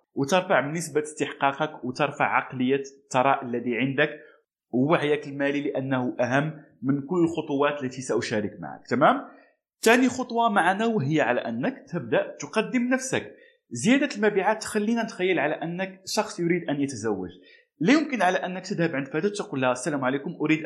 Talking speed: 145 wpm